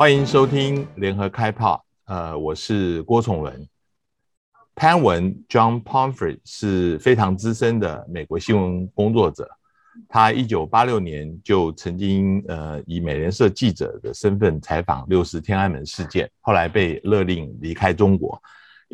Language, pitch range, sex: Chinese, 85-110 Hz, male